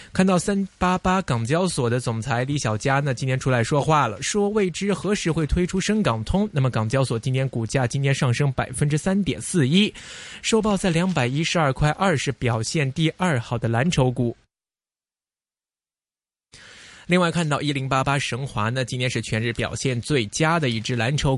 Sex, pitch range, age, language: male, 120-180 Hz, 20-39, Chinese